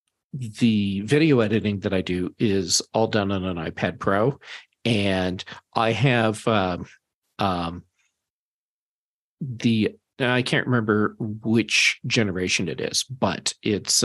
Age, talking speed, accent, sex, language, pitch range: 50-69, 120 wpm, American, male, English, 100-120 Hz